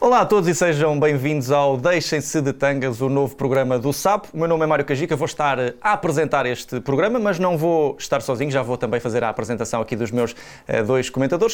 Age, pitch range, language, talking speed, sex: 20-39, 125-145 Hz, Portuguese, 225 wpm, male